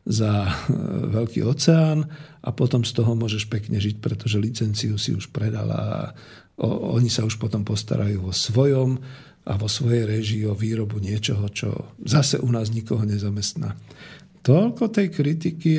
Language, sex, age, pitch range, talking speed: Slovak, male, 50-69, 110-145 Hz, 150 wpm